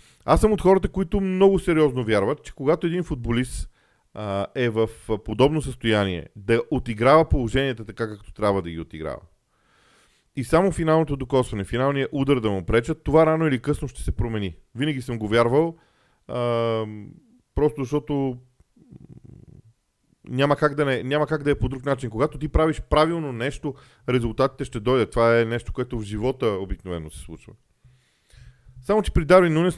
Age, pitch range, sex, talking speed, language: 40-59, 115-155 Hz, male, 165 wpm, Bulgarian